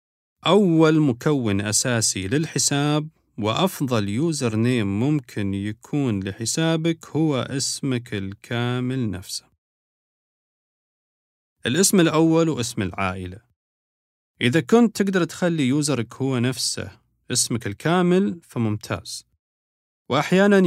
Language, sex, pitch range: Arabic, male, 105-150 Hz